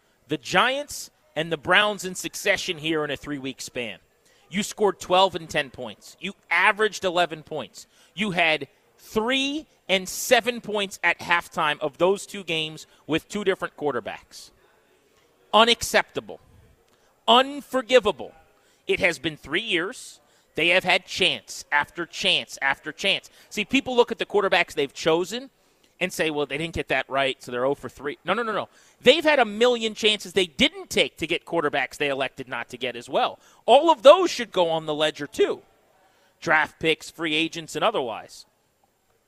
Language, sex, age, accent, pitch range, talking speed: English, male, 30-49, American, 145-210 Hz, 170 wpm